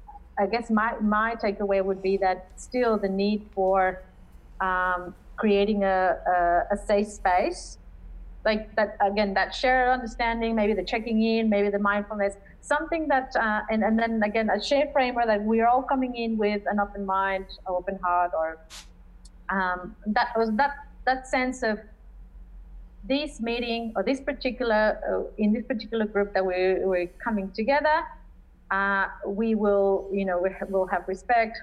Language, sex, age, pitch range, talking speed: English, female, 30-49, 190-230 Hz, 160 wpm